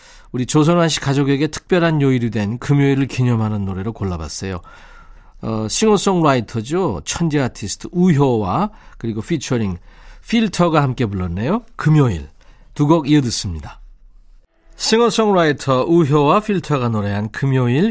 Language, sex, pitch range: Korean, male, 115-165 Hz